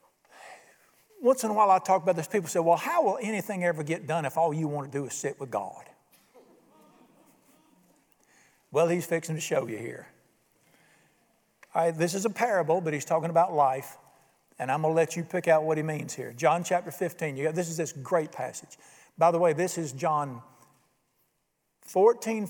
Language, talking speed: English, 195 wpm